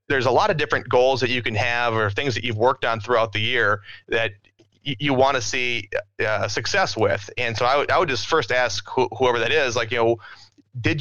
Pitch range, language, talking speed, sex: 110-130 Hz, English, 245 wpm, male